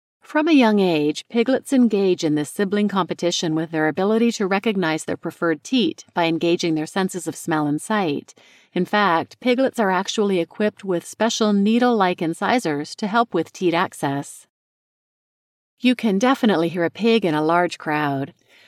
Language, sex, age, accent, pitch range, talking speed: English, female, 40-59, American, 170-225 Hz, 165 wpm